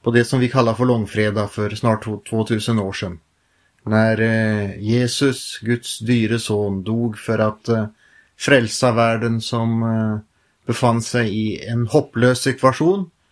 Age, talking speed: 30-49, 145 wpm